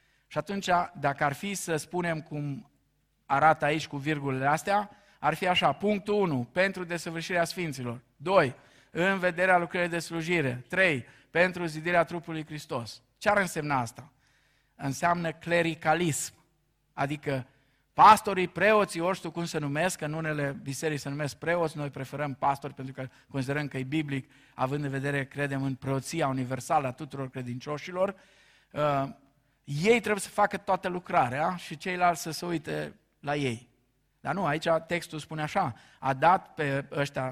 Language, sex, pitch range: Romanian, male, 140-190 Hz